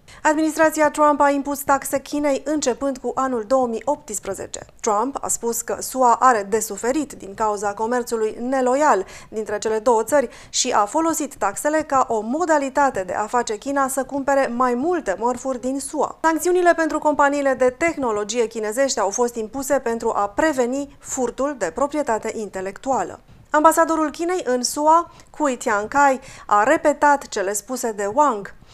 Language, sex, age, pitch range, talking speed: Romanian, female, 30-49, 225-285 Hz, 150 wpm